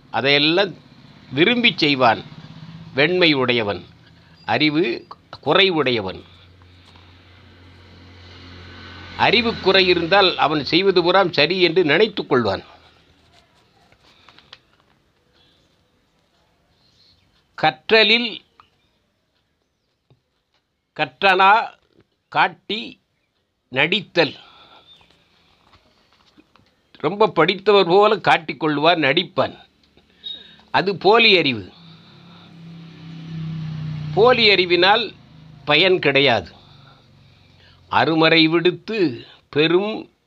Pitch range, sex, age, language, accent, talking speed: 125-180 Hz, male, 50-69, Tamil, native, 55 wpm